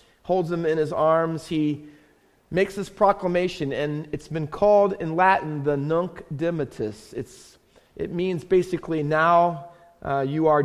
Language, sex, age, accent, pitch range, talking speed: English, male, 40-59, American, 145-180 Hz, 145 wpm